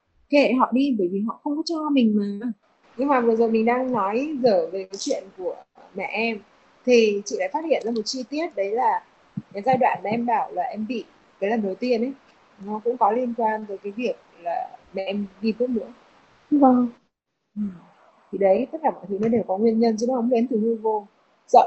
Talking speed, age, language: 235 wpm, 20-39, Vietnamese